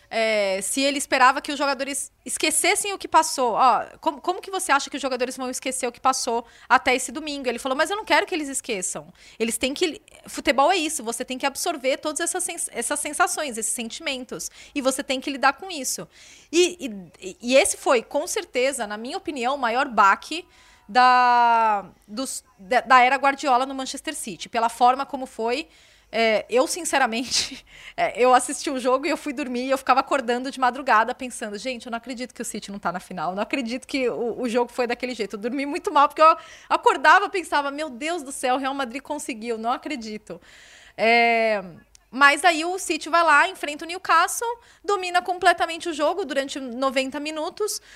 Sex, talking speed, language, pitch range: female, 205 wpm, Portuguese, 240-310 Hz